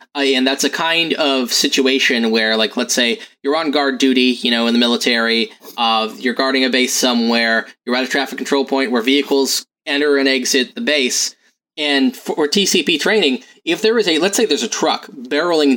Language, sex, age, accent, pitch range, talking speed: English, male, 20-39, American, 130-195 Hz, 205 wpm